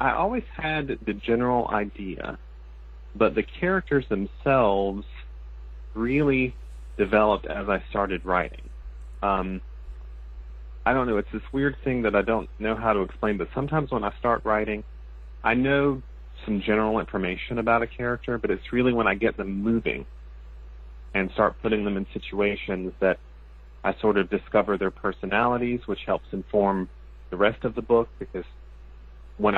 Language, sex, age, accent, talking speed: English, male, 30-49, American, 155 wpm